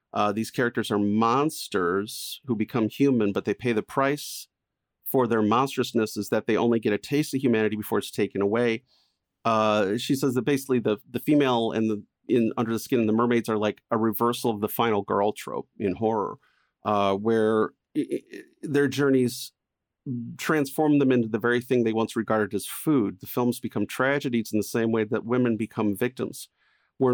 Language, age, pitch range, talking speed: English, 40-59, 110-135 Hz, 195 wpm